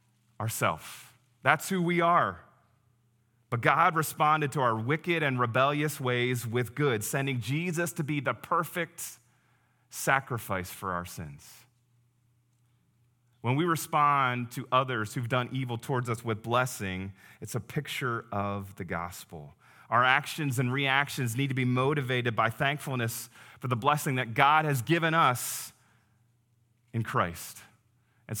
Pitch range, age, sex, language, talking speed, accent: 120-150 Hz, 30-49, male, English, 135 wpm, American